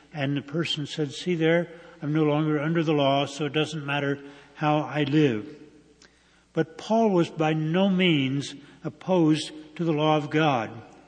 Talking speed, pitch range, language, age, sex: 170 wpm, 145-170 Hz, English, 60-79, male